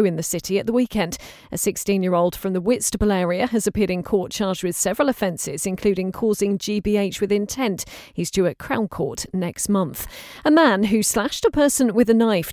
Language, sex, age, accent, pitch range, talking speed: English, female, 40-59, British, 185-230 Hz, 205 wpm